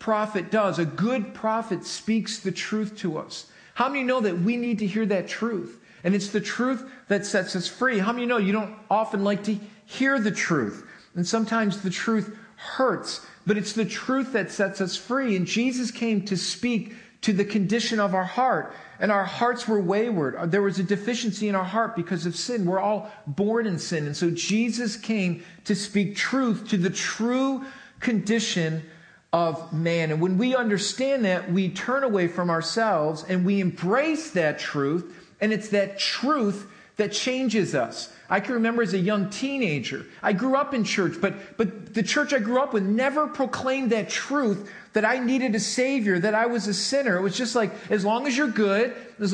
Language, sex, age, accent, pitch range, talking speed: English, male, 50-69, American, 195-240 Hz, 200 wpm